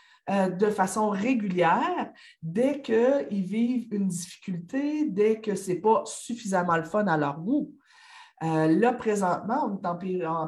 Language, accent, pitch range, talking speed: French, Canadian, 165-235 Hz, 150 wpm